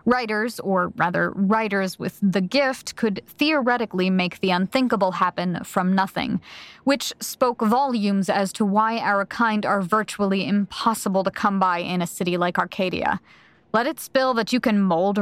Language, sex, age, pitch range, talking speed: English, female, 30-49, 190-225 Hz, 160 wpm